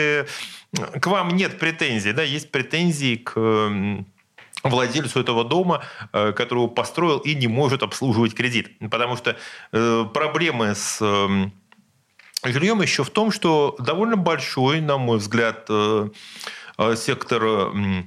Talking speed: 110 wpm